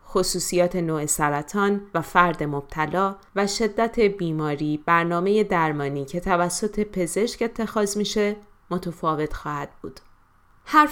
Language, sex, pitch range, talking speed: Persian, female, 170-195 Hz, 110 wpm